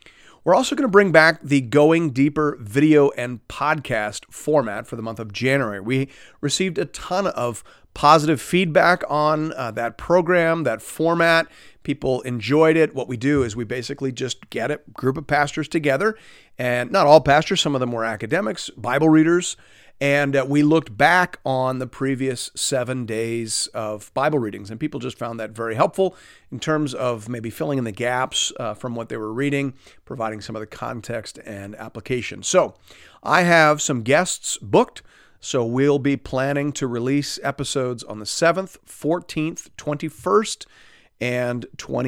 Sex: male